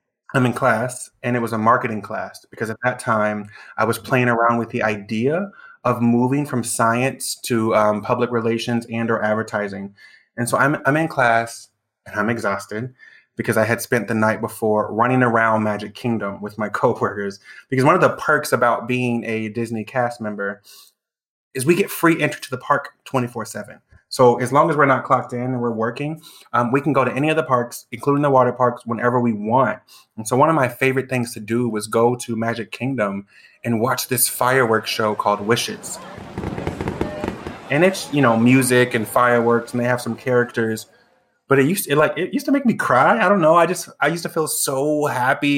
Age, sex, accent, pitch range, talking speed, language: 20-39, male, American, 115-135 Hz, 205 wpm, English